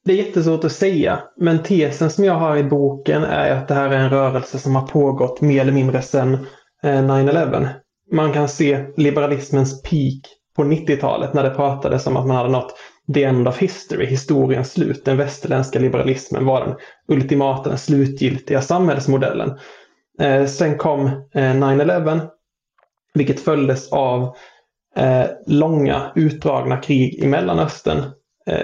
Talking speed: 145 wpm